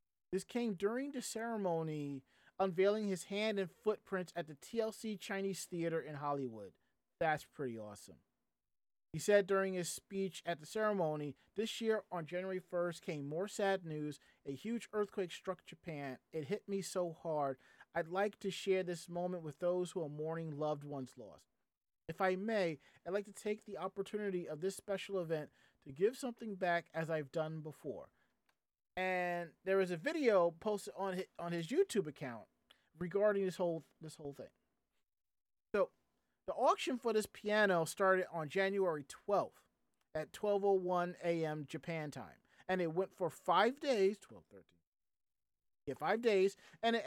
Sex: male